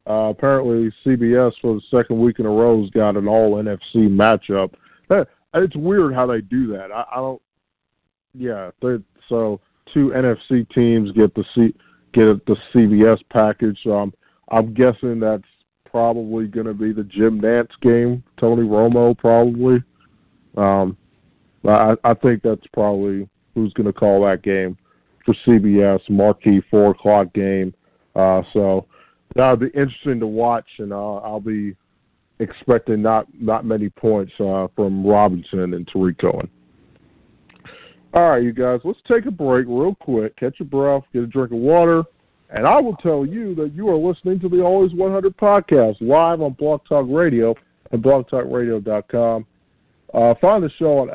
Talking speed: 160 wpm